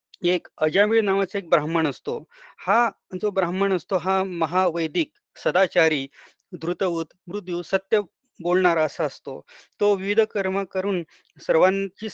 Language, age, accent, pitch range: Marathi, 30-49, native, 155-195 Hz